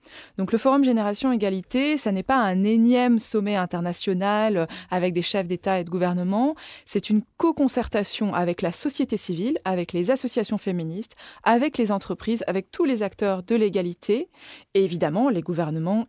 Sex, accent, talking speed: female, French, 160 wpm